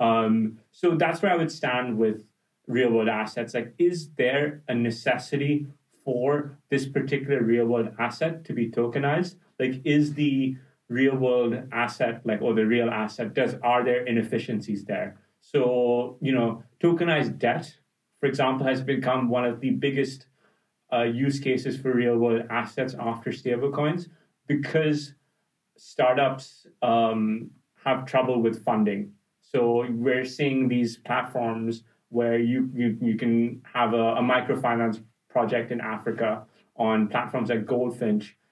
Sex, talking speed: male, 135 wpm